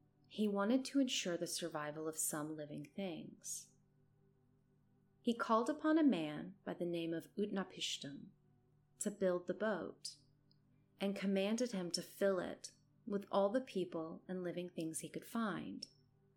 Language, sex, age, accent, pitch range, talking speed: English, female, 30-49, American, 150-195 Hz, 145 wpm